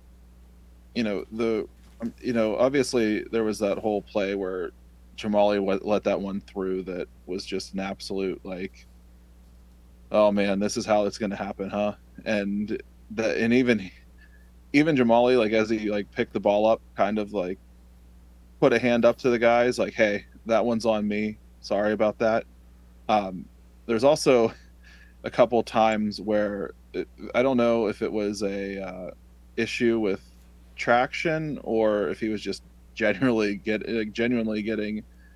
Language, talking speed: English, 160 wpm